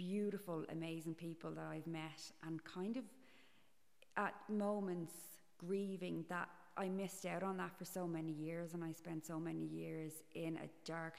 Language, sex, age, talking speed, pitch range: English, female, 30-49, 165 wpm, 150-175 Hz